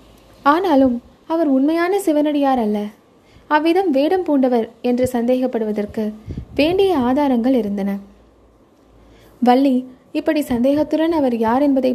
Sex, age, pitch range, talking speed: female, 20-39, 240-310 Hz, 95 wpm